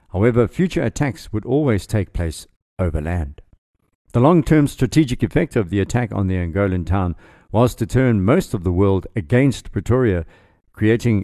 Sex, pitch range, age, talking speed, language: male, 90-120 Hz, 50-69, 160 wpm, English